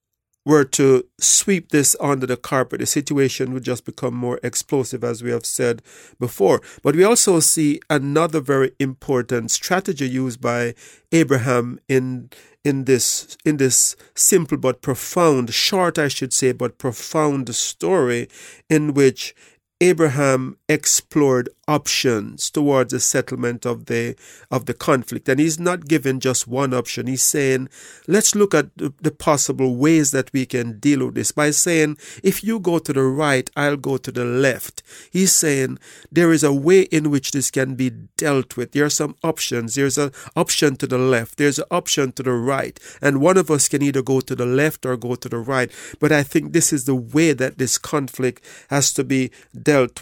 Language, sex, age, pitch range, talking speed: English, male, 50-69, 130-150 Hz, 180 wpm